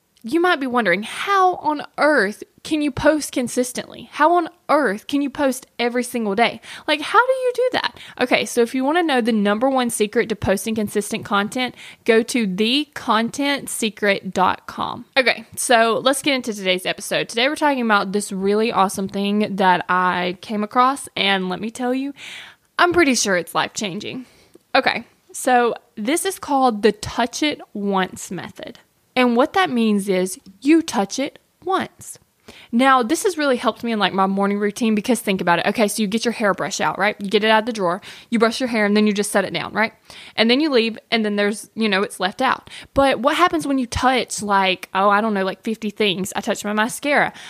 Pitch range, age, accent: 200-265 Hz, 20-39, American